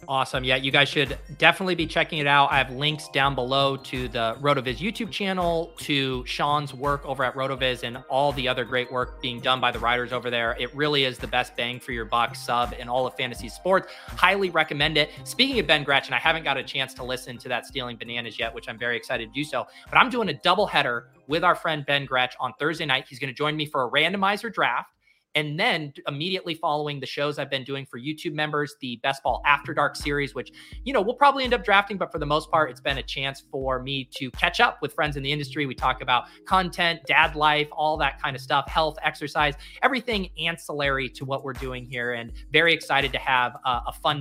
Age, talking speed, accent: 30-49, 240 wpm, American